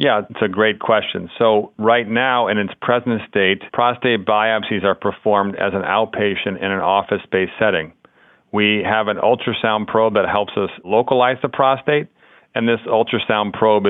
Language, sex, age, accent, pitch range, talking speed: English, male, 40-59, American, 95-110 Hz, 165 wpm